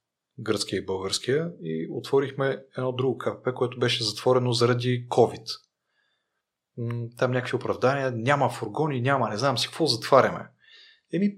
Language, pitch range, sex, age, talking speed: Bulgarian, 110-135 Hz, male, 30-49, 130 wpm